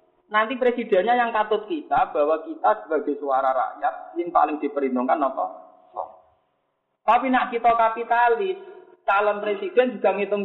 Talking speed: 130 wpm